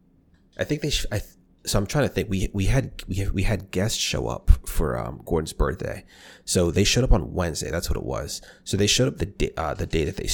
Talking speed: 240 wpm